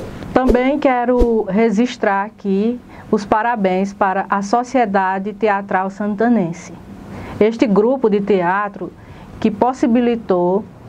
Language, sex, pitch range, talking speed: Portuguese, female, 195-235 Hz, 95 wpm